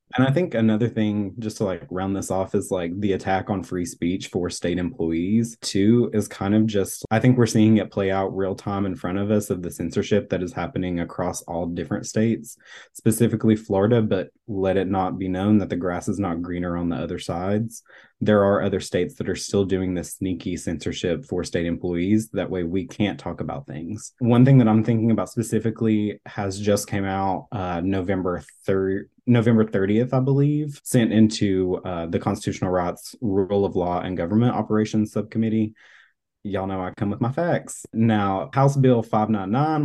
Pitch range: 90-115 Hz